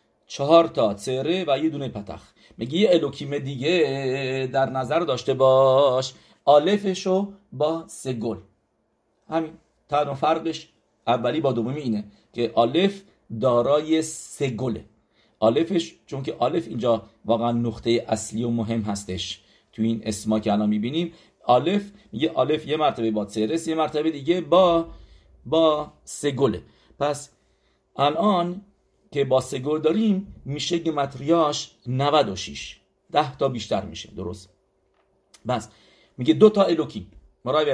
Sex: male